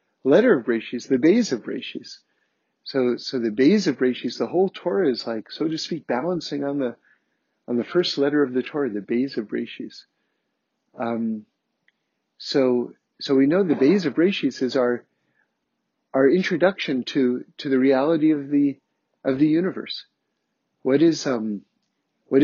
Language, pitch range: English, 130-180 Hz